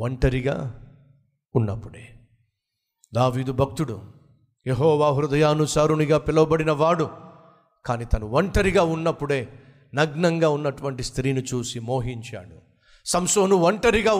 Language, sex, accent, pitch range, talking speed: Telugu, male, native, 135-225 Hz, 80 wpm